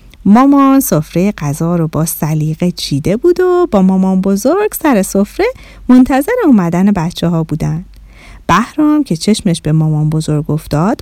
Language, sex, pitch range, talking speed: Persian, female, 185-270 Hz, 140 wpm